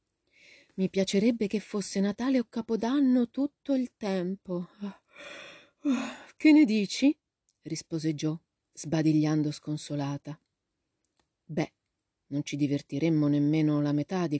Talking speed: 105 wpm